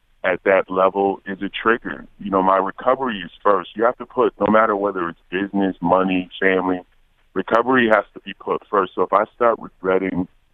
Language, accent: English, American